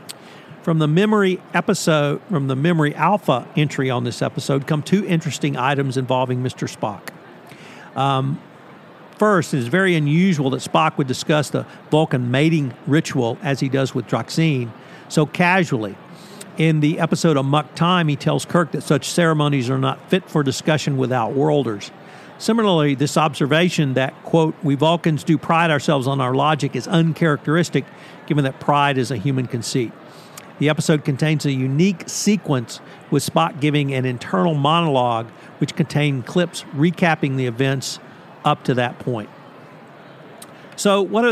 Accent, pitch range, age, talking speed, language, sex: American, 135-170 Hz, 50-69, 155 wpm, English, male